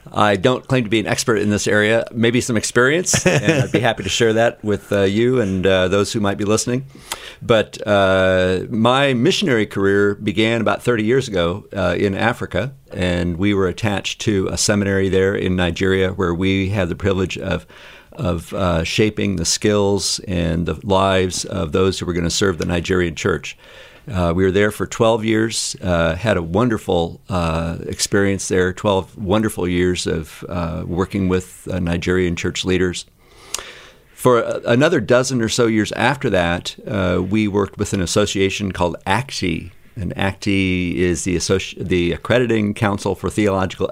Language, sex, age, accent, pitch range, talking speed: English, male, 50-69, American, 90-110 Hz, 175 wpm